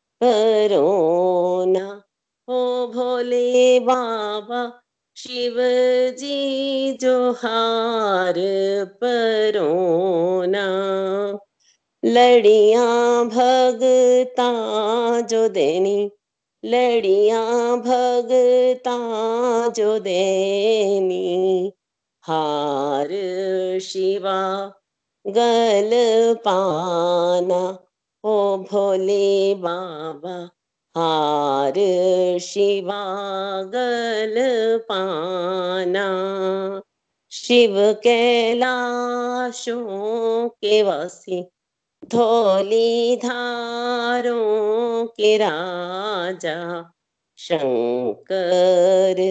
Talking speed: 45 wpm